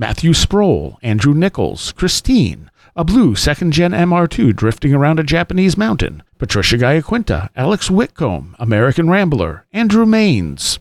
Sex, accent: male, American